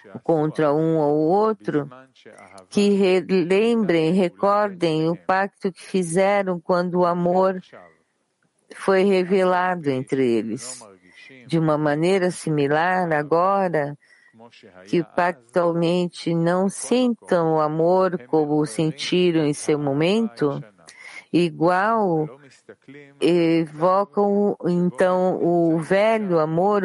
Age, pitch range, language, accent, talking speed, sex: 40-59, 155-195 Hz, English, Brazilian, 90 wpm, female